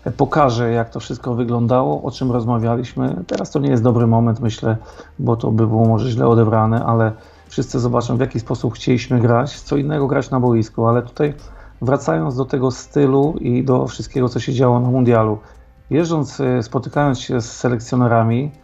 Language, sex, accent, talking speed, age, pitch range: Polish, male, native, 175 wpm, 40-59, 115-135 Hz